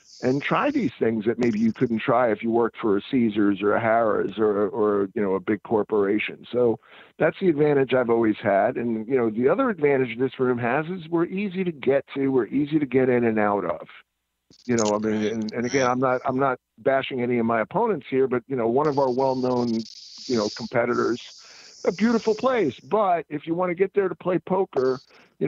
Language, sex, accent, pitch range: English, male, American, 115-145 Hz